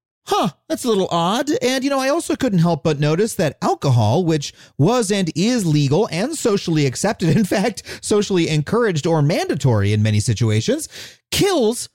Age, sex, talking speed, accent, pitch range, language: 30-49, male, 170 wpm, American, 145-235 Hz, English